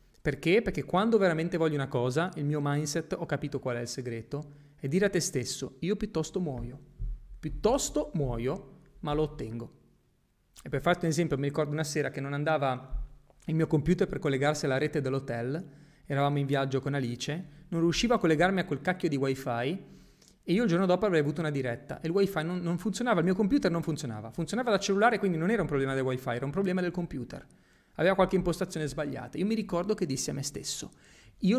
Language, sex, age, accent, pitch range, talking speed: Italian, male, 30-49, native, 140-190 Hz, 210 wpm